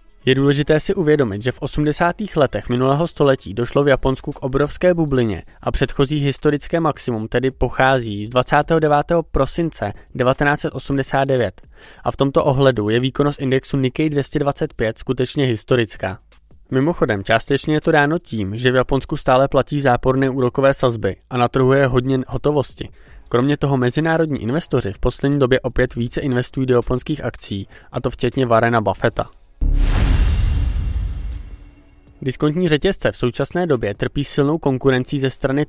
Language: Czech